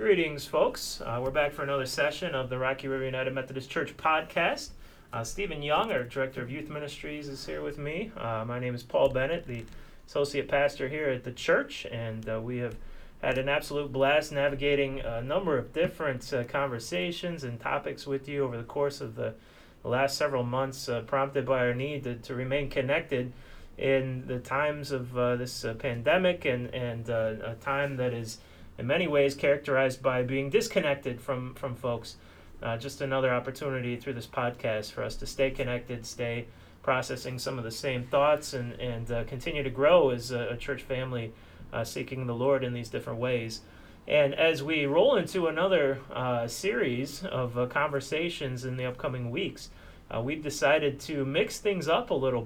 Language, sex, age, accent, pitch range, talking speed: English, male, 30-49, American, 120-140 Hz, 190 wpm